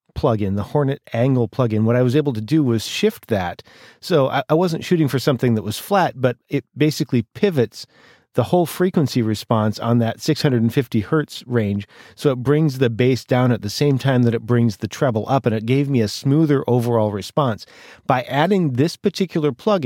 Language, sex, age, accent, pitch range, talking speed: English, male, 40-59, American, 115-145 Hz, 200 wpm